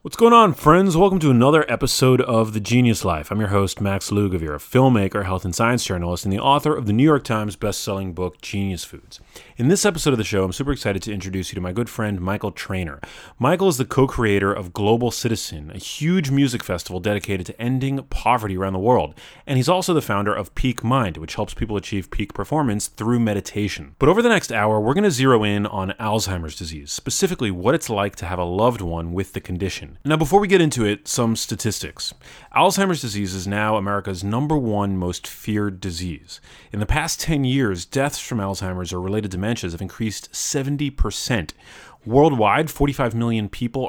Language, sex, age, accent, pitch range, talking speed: English, male, 30-49, American, 95-130 Hz, 205 wpm